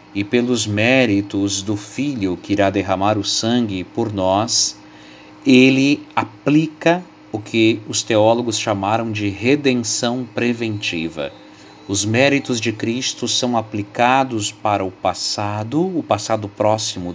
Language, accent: Portuguese, Brazilian